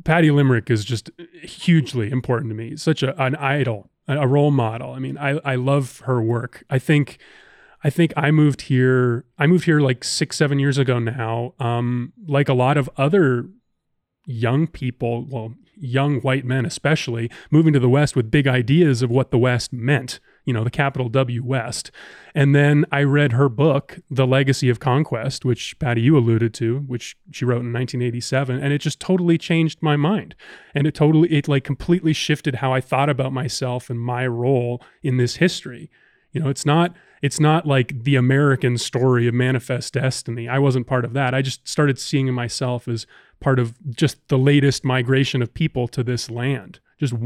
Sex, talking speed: male, 190 wpm